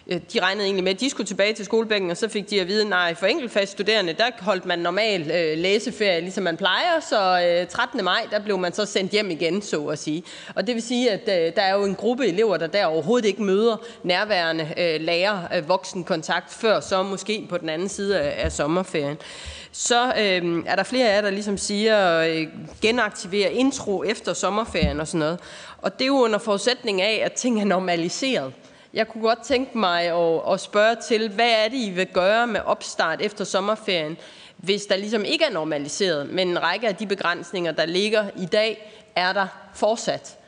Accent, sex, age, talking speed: native, female, 30-49, 195 wpm